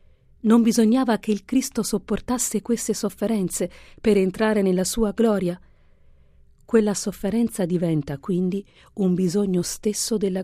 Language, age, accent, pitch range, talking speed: Italian, 50-69, native, 155-210 Hz, 120 wpm